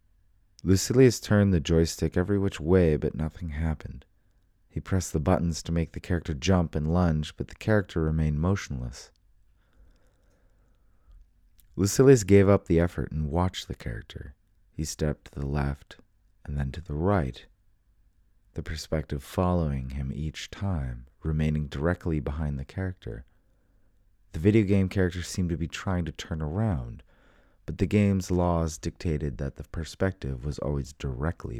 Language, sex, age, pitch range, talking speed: English, male, 30-49, 75-95 Hz, 150 wpm